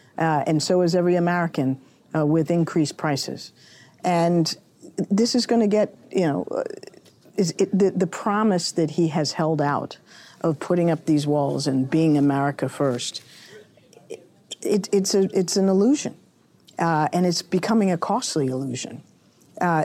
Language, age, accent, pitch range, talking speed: English, 50-69, American, 150-190 Hz, 160 wpm